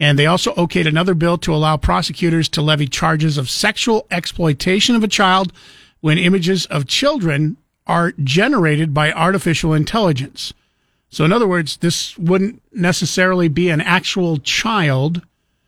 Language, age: English, 50-69